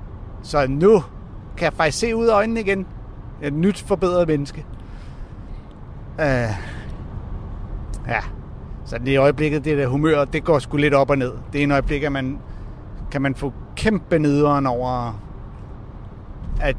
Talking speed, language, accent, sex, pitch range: 150 wpm, Danish, native, male, 115-150 Hz